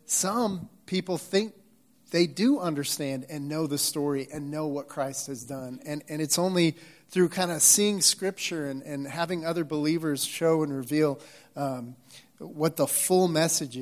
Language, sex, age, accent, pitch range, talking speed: English, male, 30-49, American, 145-175 Hz, 165 wpm